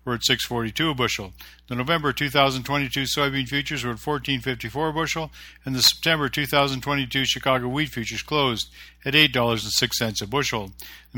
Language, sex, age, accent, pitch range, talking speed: English, male, 50-69, American, 115-145 Hz, 225 wpm